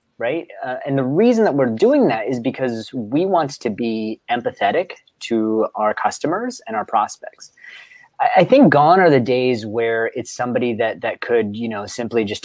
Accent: American